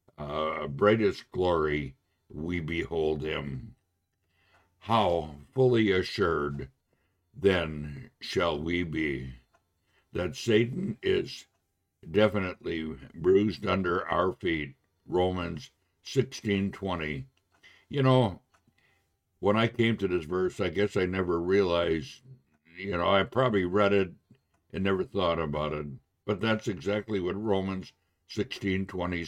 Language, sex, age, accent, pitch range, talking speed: English, male, 60-79, American, 85-105 Hz, 110 wpm